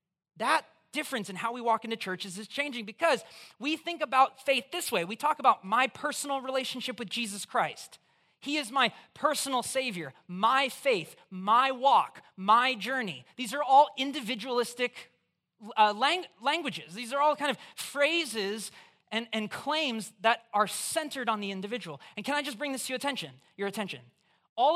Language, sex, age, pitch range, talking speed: English, male, 30-49, 215-290 Hz, 170 wpm